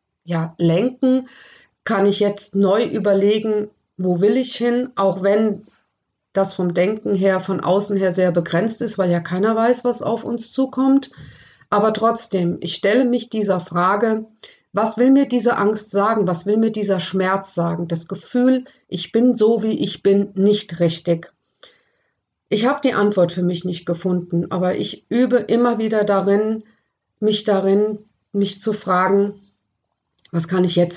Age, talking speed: 50-69, 160 wpm